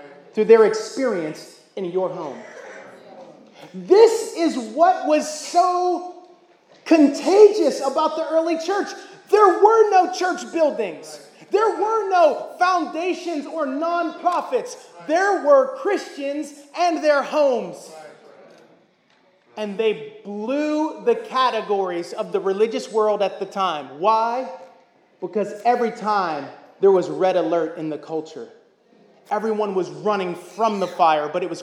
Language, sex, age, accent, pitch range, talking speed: English, male, 30-49, American, 215-335 Hz, 125 wpm